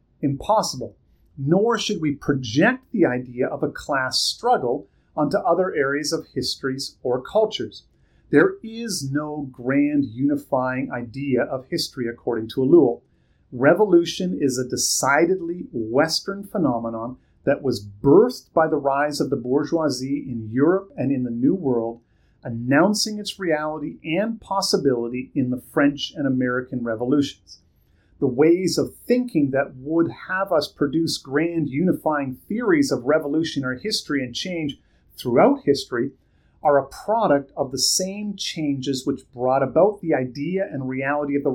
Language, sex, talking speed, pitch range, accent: English, male, 140 wpm, 125-160 Hz, American